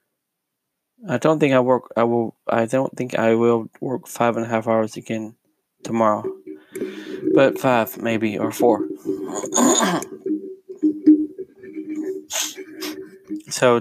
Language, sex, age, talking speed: English, male, 20-39, 115 wpm